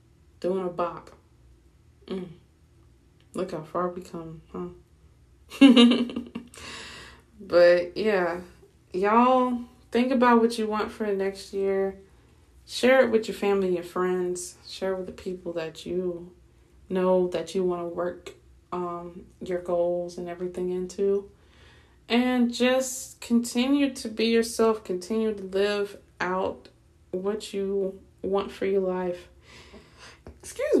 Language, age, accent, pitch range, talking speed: English, 20-39, American, 180-225 Hz, 125 wpm